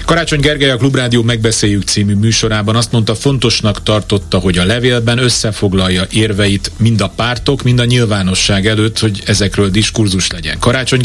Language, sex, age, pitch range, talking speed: Hungarian, male, 30-49, 100-120 Hz, 150 wpm